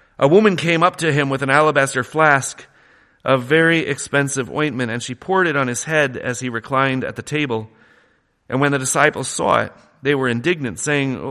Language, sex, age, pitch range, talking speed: English, male, 40-59, 100-135 Hz, 195 wpm